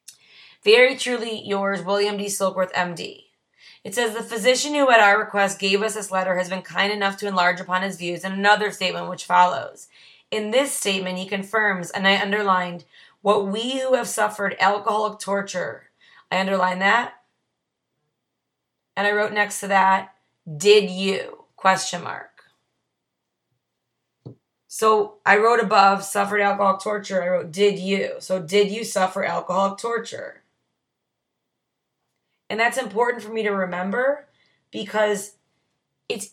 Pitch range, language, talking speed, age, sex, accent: 185-215 Hz, English, 145 wpm, 30-49, female, American